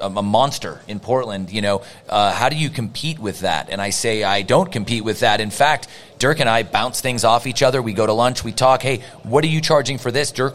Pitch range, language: 130-170 Hz, English